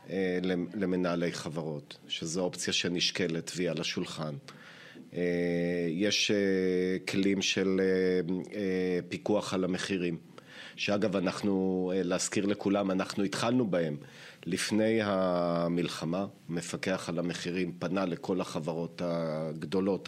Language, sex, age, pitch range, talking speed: Hebrew, male, 40-59, 90-110 Hz, 90 wpm